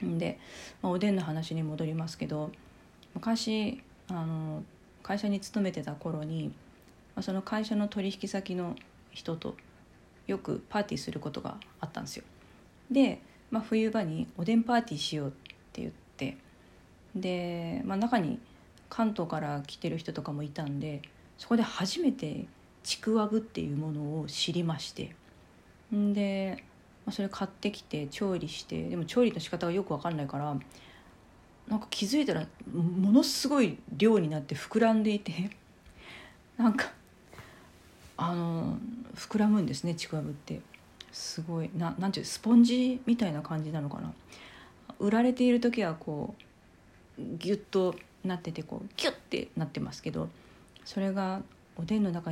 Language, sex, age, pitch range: Japanese, female, 40-59, 155-215 Hz